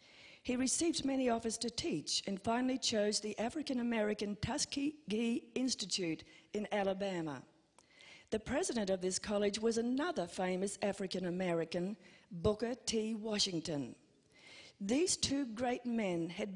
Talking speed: 115 wpm